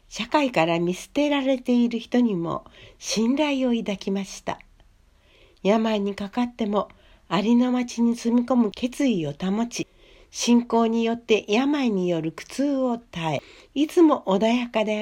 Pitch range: 185-255 Hz